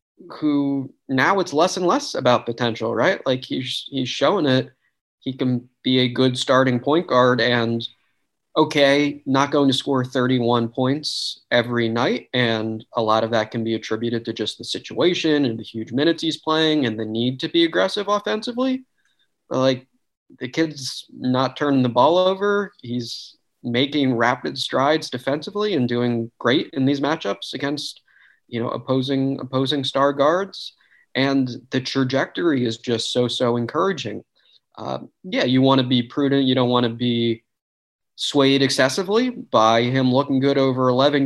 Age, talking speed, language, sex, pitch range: 20-39, 165 wpm, English, male, 120-145 Hz